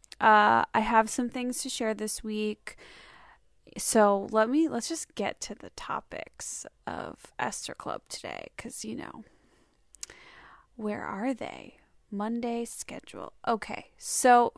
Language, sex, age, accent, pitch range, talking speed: English, female, 10-29, American, 205-235 Hz, 130 wpm